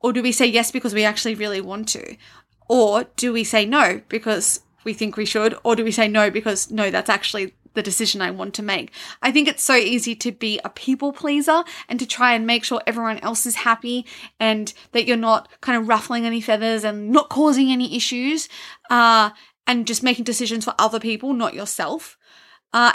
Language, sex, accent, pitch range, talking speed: English, female, Australian, 215-250 Hz, 210 wpm